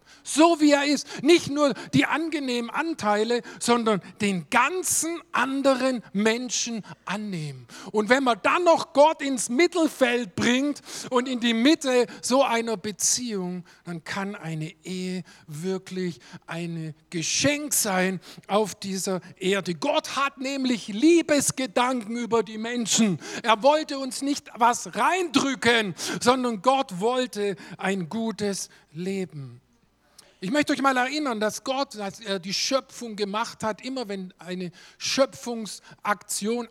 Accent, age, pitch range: German, 50-69, 180-260 Hz